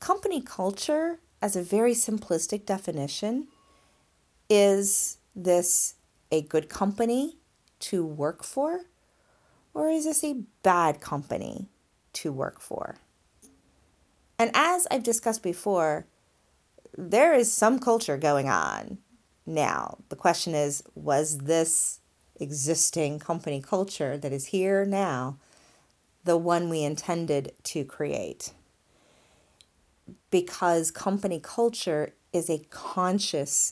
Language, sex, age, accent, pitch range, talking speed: English, female, 30-49, American, 145-210 Hz, 105 wpm